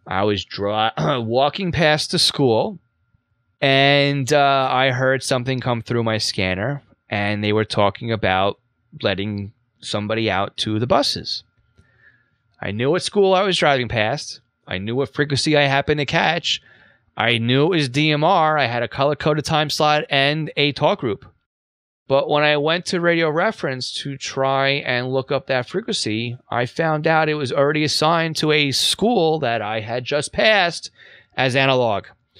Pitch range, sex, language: 110-150 Hz, male, English